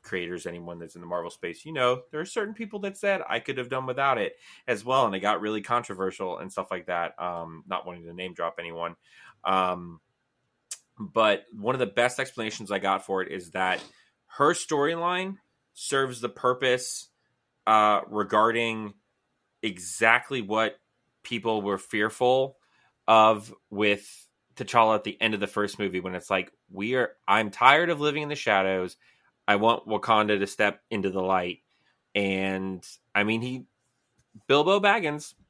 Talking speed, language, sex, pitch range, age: 170 wpm, English, male, 100-145 Hz, 20-39